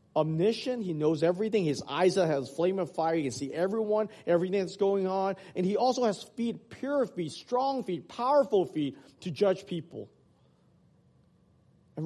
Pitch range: 155-200 Hz